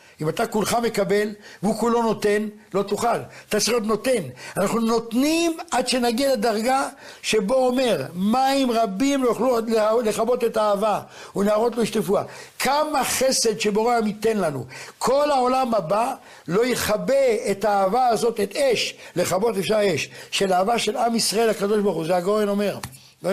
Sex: male